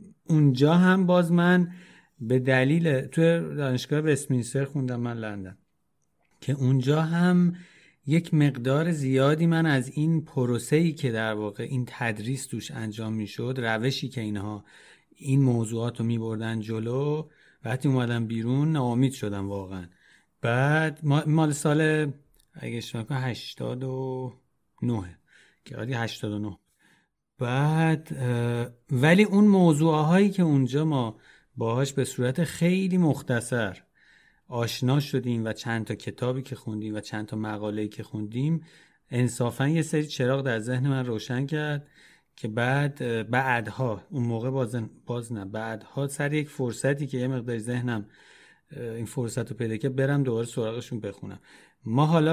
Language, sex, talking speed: Persian, male, 135 wpm